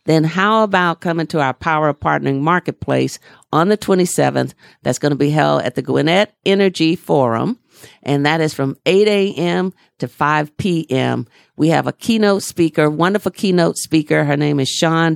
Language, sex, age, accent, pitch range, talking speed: English, female, 50-69, American, 145-180 Hz, 170 wpm